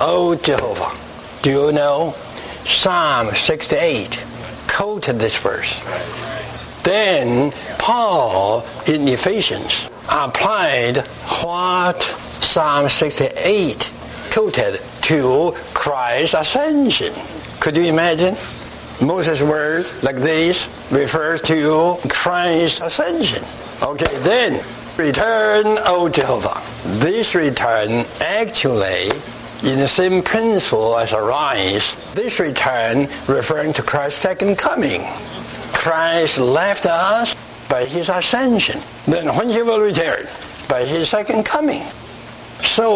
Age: 60-79